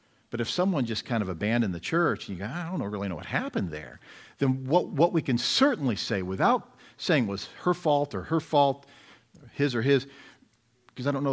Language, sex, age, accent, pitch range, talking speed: English, male, 50-69, American, 110-150 Hz, 215 wpm